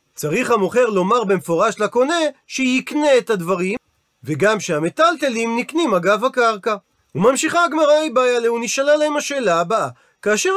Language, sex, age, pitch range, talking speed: Hebrew, male, 40-59, 195-265 Hz, 125 wpm